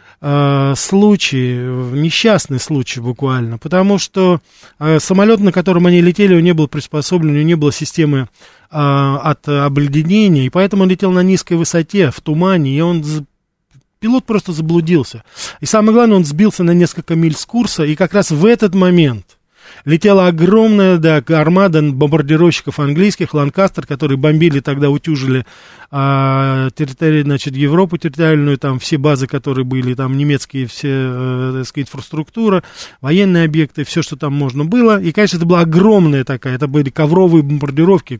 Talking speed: 155 wpm